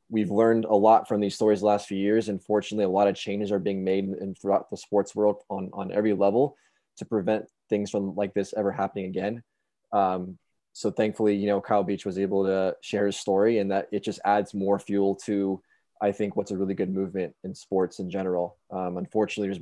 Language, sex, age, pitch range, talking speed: English, male, 20-39, 95-105 Hz, 225 wpm